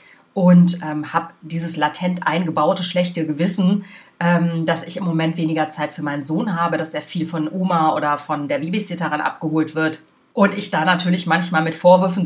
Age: 30-49